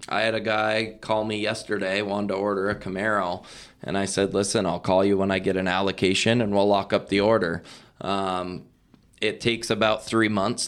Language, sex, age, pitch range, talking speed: English, male, 20-39, 100-110 Hz, 200 wpm